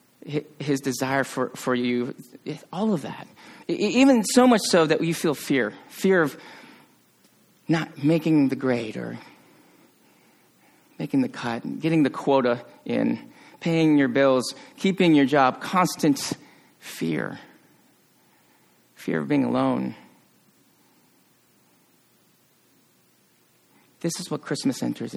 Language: English